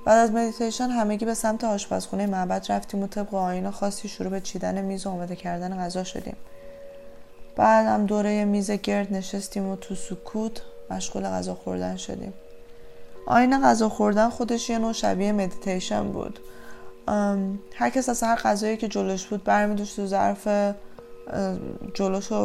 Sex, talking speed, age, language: female, 150 wpm, 20-39, Persian